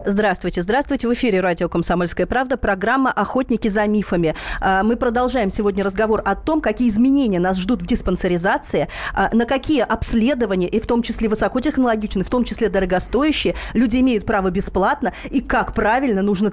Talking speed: 155 wpm